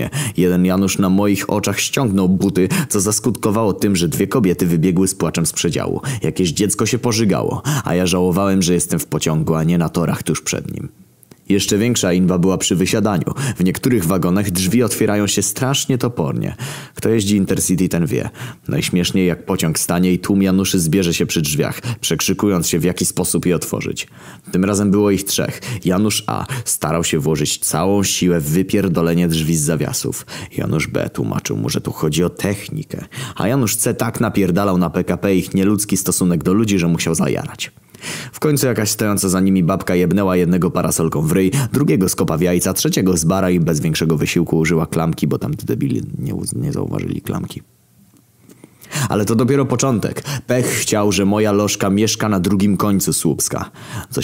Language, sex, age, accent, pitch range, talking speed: Polish, male, 20-39, native, 90-110 Hz, 180 wpm